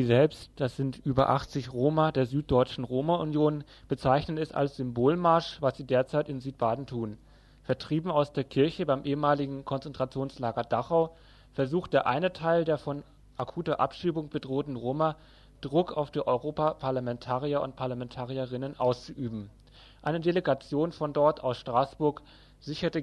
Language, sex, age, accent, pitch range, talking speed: German, male, 30-49, German, 130-155 Hz, 135 wpm